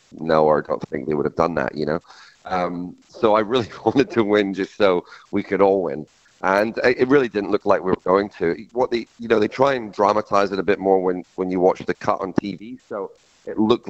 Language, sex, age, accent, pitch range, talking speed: English, male, 40-59, British, 80-95 Hz, 245 wpm